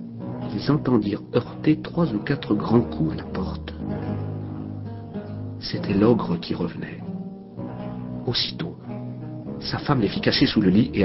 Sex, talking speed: male, 135 wpm